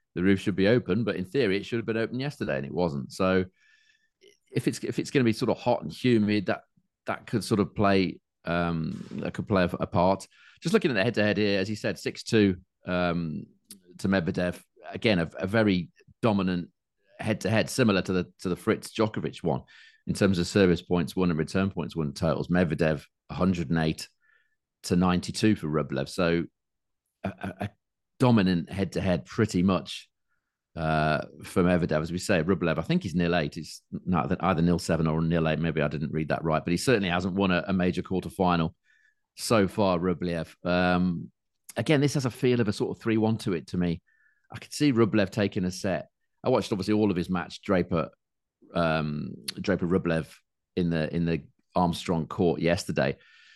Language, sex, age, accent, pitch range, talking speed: English, male, 40-59, British, 85-105 Hz, 205 wpm